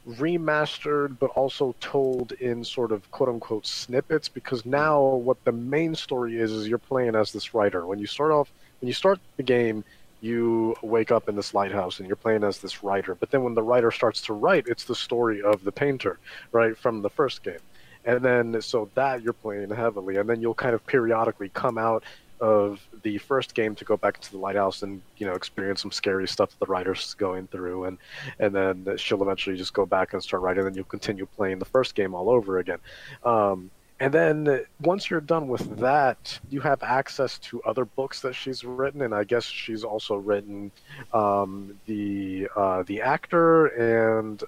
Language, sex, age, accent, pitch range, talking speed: English, male, 30-49, American, 100-130 Hz, 200 wpm